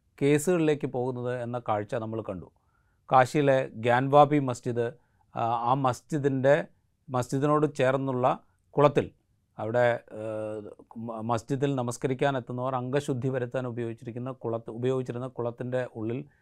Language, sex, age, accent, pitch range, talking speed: Malayalam, male, 30-49, native, 115-140 Hz, 90 wpm